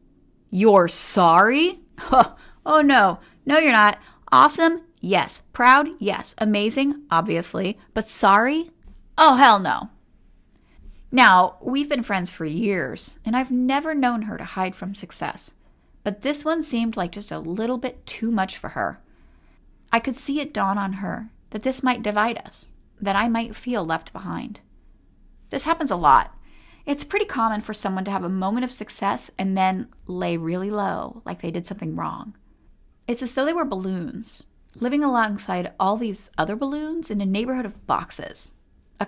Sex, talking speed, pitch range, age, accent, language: female, 165 wpm, 190-260 Hz, 30-49, American, English